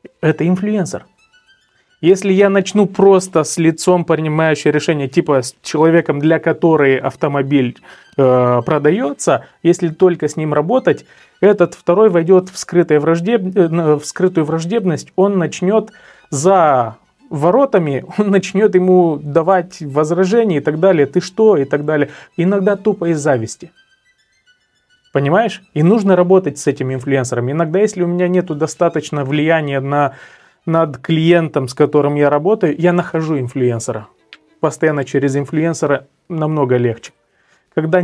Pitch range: 140-180 Hz